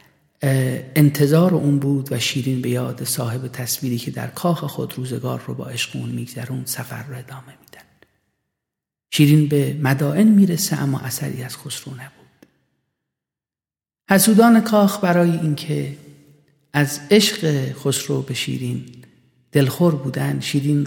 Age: 50-69